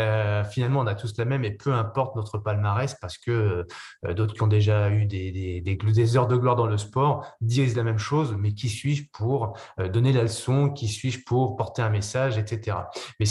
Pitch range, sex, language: 105-135 Hz, male, French